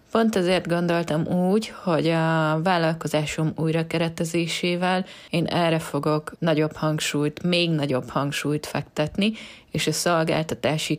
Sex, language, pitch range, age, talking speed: female, Hungarian, 150-175 Hz, 20-39, 110 wpm